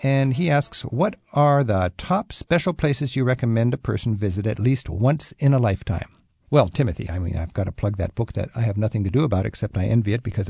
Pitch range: 95-125 Hz